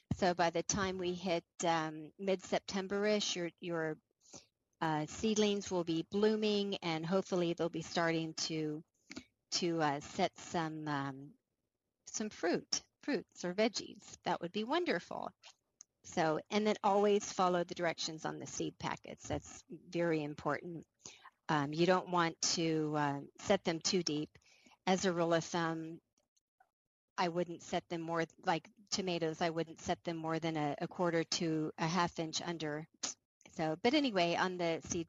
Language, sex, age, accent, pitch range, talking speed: English, female, 40-59, American, 160-195 Hz, 155 wpm